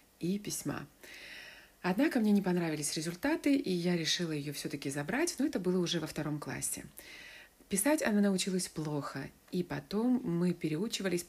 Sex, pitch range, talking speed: female, 160-220 Hz, 150 wpm